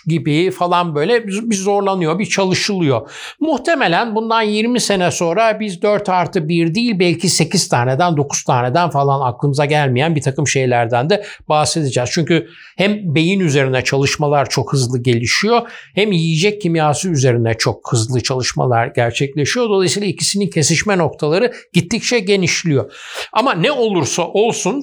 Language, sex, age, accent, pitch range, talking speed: Turkish, male, 60-79, native, 140-200 Hz, 135 wpm